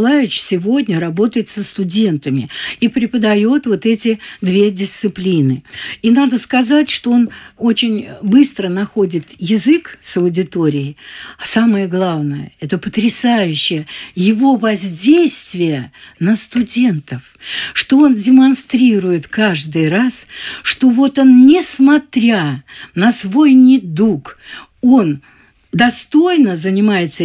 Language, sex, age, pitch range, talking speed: Russian, female, 60-79, 175-240 Hz, 100 wpm